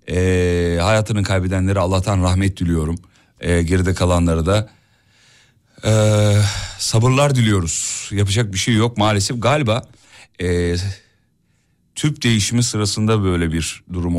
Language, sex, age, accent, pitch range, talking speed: Turkish, male, 40-59, native, 90-120 Hz, 110 wpm